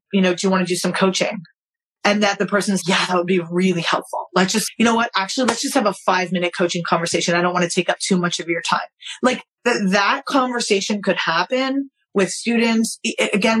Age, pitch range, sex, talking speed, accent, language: 30-49, 180-210 Hz, female, 235 wpm, American, English